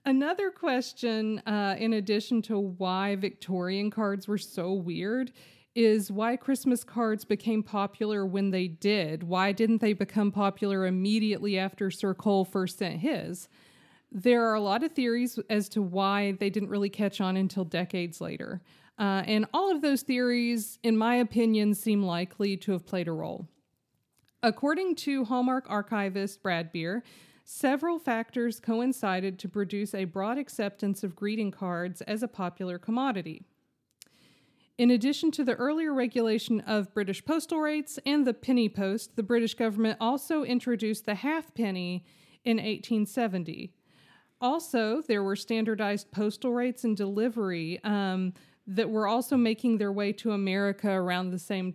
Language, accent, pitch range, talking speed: English, American, 190-235 Hz, 150 wpm